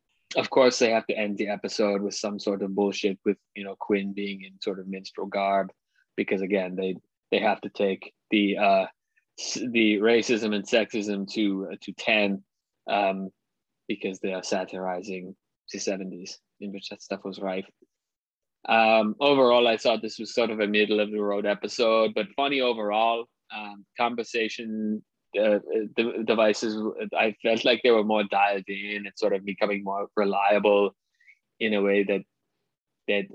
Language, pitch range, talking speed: English, 100-110 Hz, 170 wpm